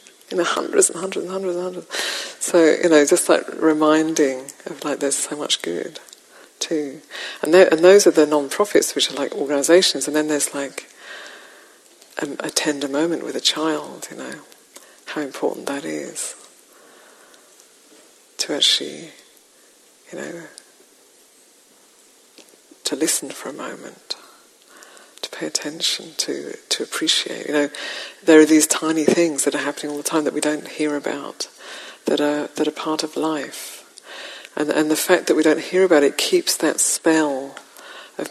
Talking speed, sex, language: 160 wpm, female, English